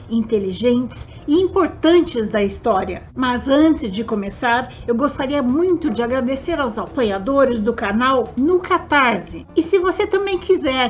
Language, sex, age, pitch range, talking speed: Portuguese, female, 60-79, 235-315 Hz, 140 wpm